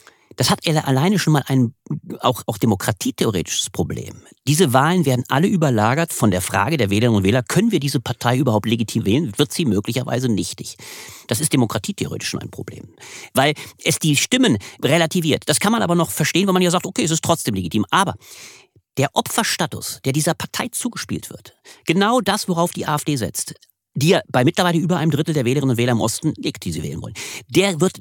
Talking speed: 200 wpm